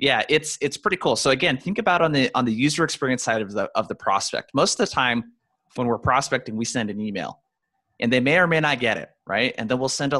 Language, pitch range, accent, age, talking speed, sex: English, 115-145 Hz, American, 30-49, 270 wpm, male